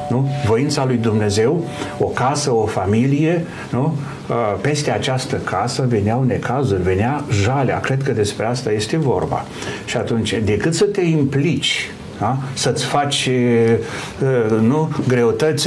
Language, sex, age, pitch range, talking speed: Romanian, male, 60-79, 115-145 Hz, 125 wpm